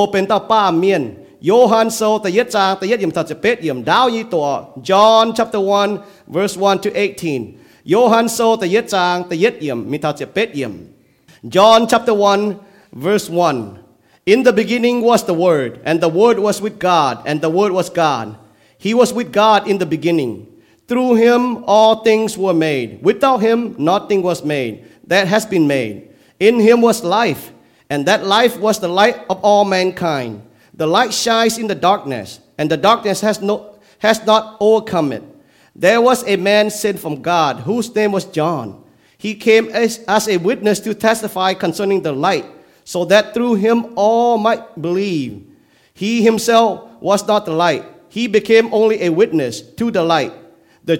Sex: male